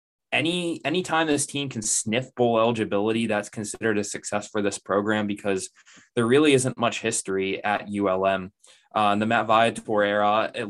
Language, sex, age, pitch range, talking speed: English, male, 20-39, 100-115 Hz, 170 wpm